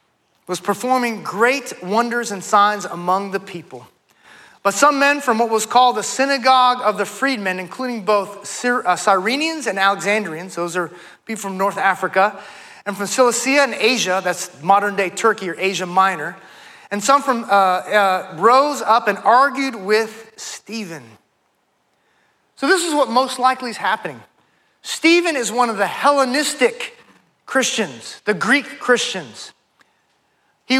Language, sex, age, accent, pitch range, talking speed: English, male, 30-49, American, 205-270 Hz, 140 wpm